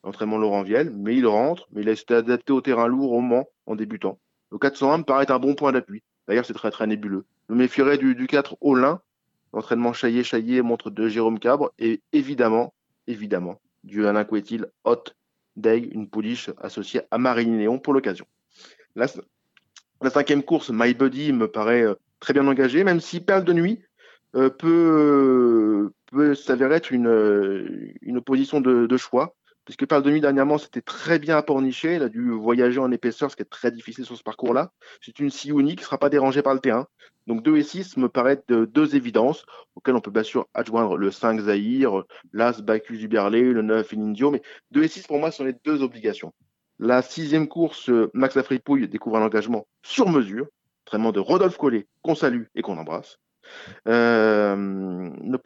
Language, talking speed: French, 190 wpm